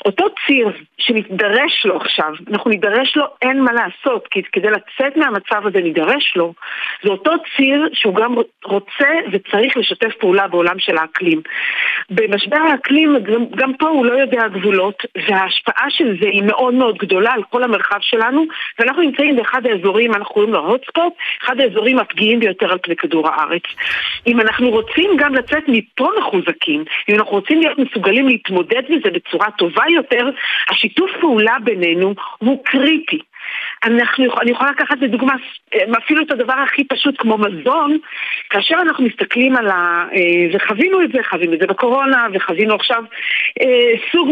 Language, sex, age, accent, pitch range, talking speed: Hebrew, female, 50-69, native, 205-280 Hz, 155 wpm